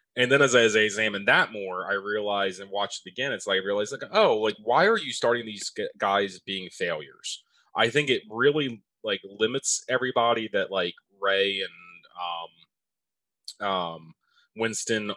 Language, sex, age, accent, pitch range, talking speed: English, male, 30-49, American, 95-125 Hz, 175 wpm